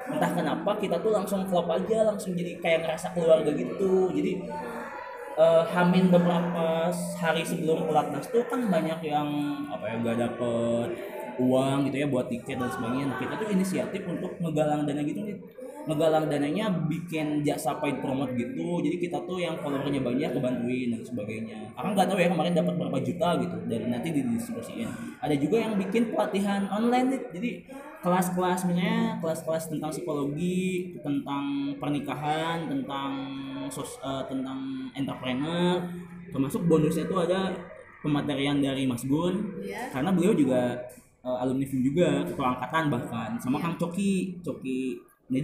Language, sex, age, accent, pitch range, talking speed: Indonesian, male, 20-39, native, 135-195 Hz, 145 wpm